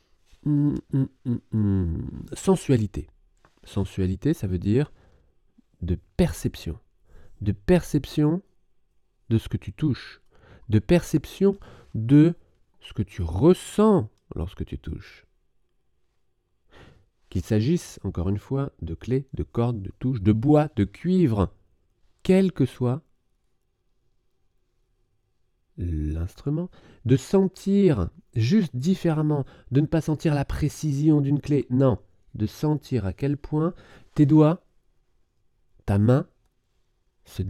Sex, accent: male, French